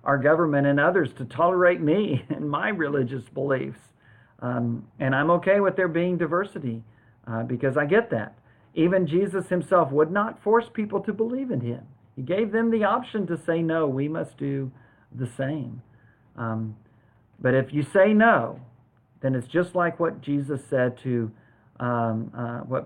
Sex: male